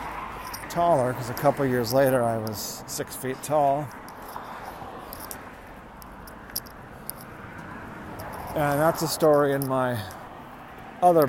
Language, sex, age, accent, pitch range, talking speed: English, male, 40-59, American, 115-135 Hz, 100 wpm